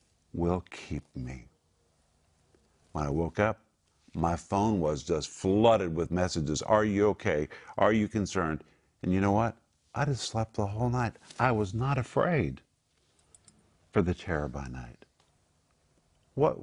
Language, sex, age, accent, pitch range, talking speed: English, male, 50-69, American, 85-115 Hz, 145 wpm